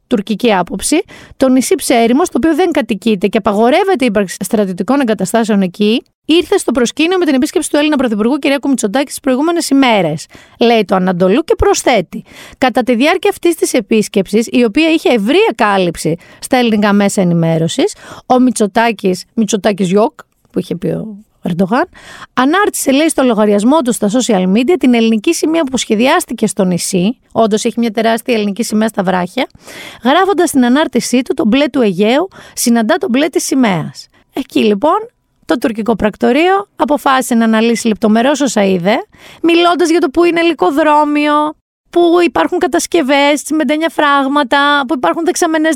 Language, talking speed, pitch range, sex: Greek, 155 wpm, 215-320 Hz, female